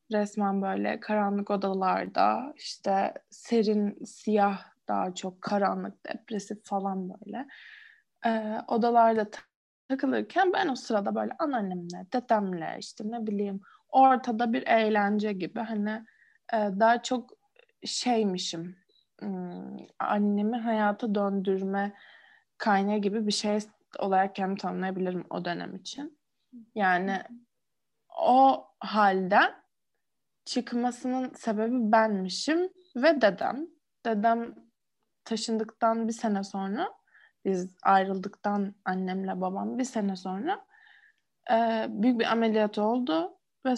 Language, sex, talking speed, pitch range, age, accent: Turkish, female, 100 wpm, 195-255 Hz, 20-39, native